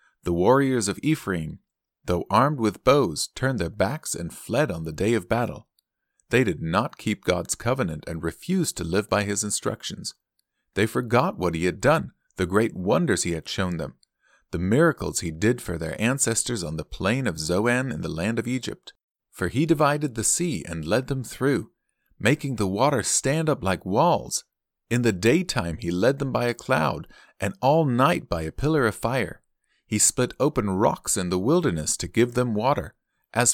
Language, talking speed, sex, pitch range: English, 190 wpm, male, 90-125 Hz